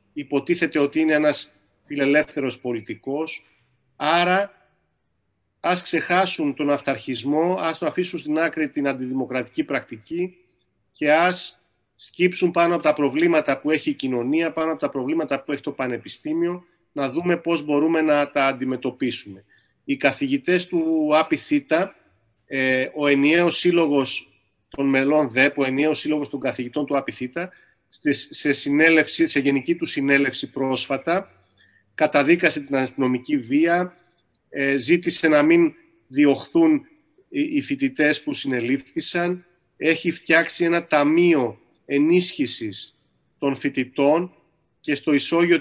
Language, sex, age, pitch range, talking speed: Greek, male, 40-59, 135-175 Hz, 120 wpm